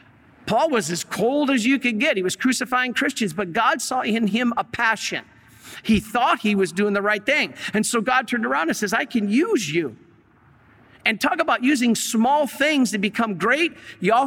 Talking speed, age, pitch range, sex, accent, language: 200 wpm, 50-69, 200-245 Hz, male, American, English